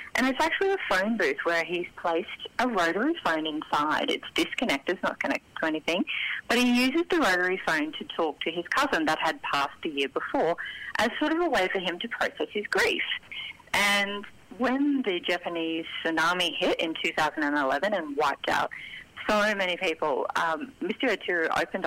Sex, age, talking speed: female, 30-49, 180 wpm